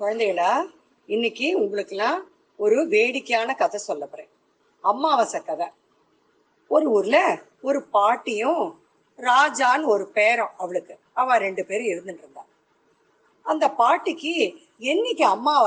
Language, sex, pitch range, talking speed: Tamil, female, 225-340 Hz, 45 wpm